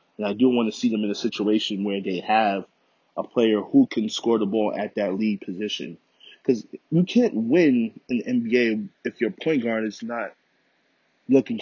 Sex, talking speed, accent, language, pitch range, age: male, 195 wpm, American, English, 105-130 Hz, 20-39